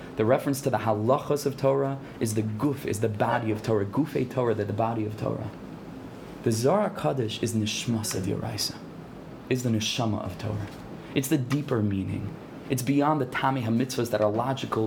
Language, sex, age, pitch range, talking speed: English, male, 20-39, 110-140 Hz, 180 wpm